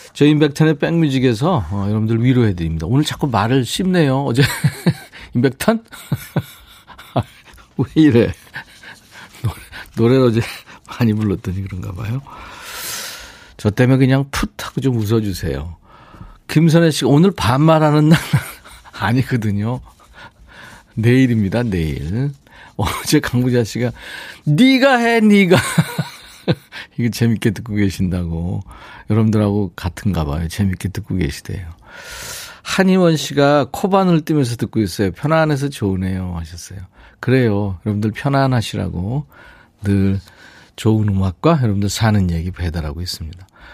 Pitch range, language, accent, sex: 95-140 Hz, Korean, native, male